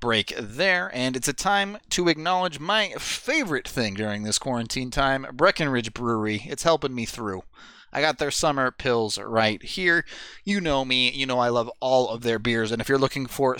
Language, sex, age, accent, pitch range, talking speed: English, male, 30-49, American, 120-160 Hz, 195 wpm